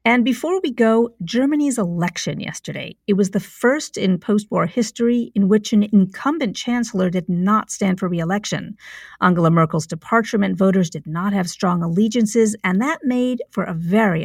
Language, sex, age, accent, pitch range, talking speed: English, female, 50-69, American, 185-225 Hz, 170 wpm